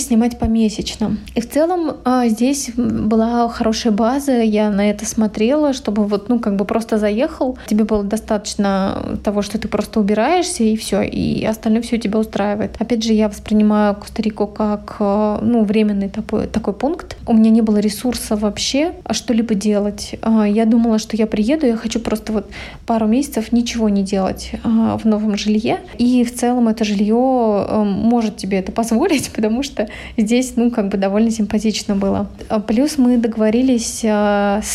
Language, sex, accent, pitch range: Russian, female, native, 210-235 Hz